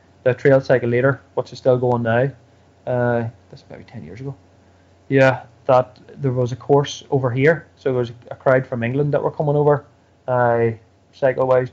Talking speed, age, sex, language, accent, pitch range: 185 wpm, 20-39, male, English, Irish, 115-140 Hz